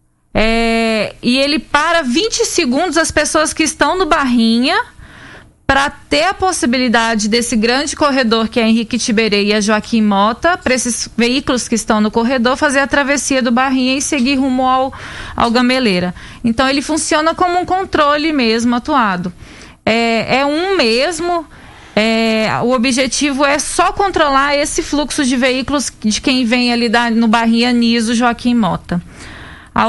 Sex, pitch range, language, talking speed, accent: female, 225-285 Hz, Portuguese, 155 wpm, Brazilian